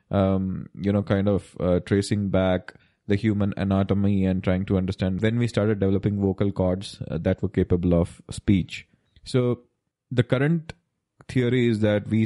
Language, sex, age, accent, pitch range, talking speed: English, male, 20-39, Indian, 95-110 Hz, 165 wpm